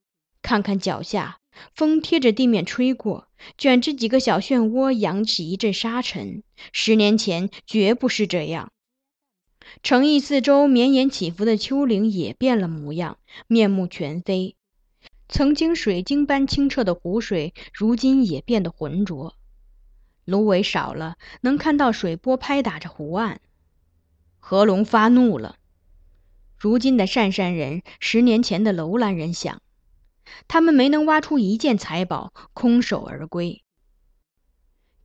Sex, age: female, 20-39